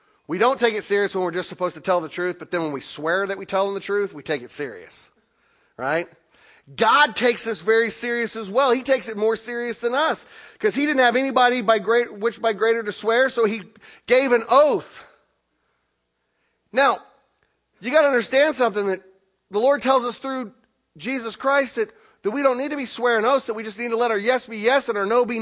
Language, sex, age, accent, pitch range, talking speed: English, male, 30-49, American, 180-260 Hz, 230 wpm